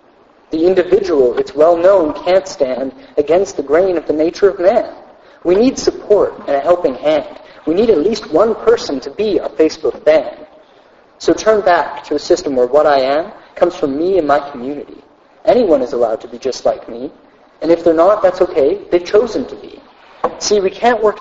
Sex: male